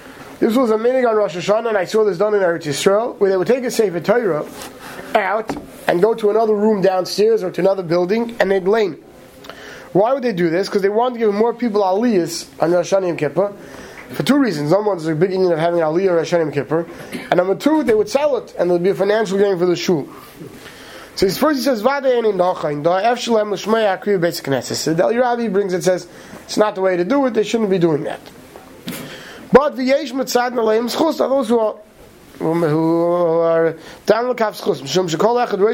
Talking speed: 200 wpm